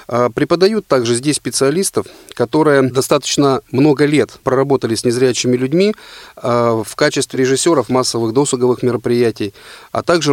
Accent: native